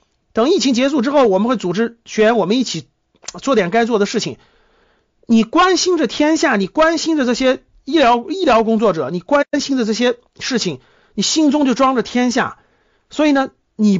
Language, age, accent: Chinese, 50-69, native